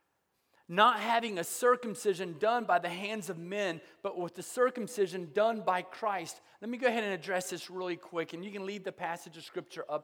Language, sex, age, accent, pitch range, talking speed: English, male, 30-49, American, 170-220 Hz, 210 wpm